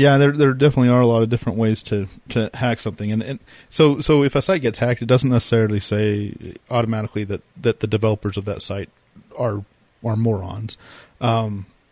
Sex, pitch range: male, 105-120 Hz